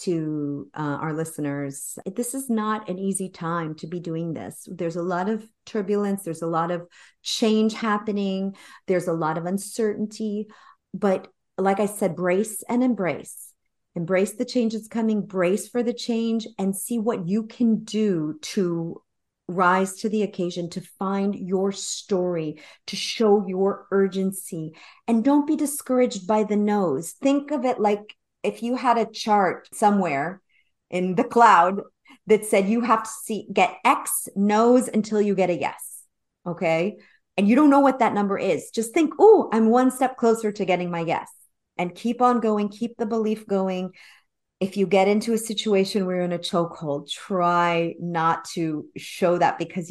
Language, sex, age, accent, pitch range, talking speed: English, female, 40-59, American, 175-220 Hz, 170 wpm